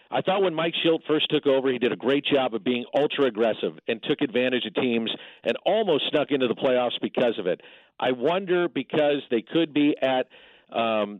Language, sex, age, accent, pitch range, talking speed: English, male, 50-69, American, 125-155 Hz, 205 wpm